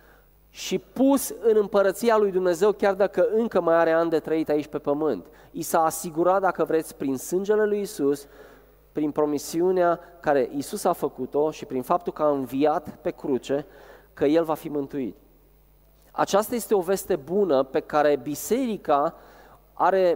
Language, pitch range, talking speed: Romanian, 155-205 Hz, 160 wpm